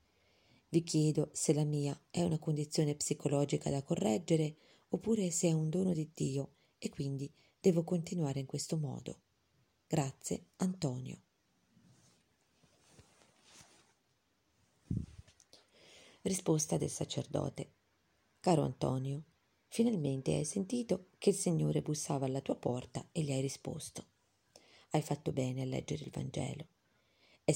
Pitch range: 135-170 Hz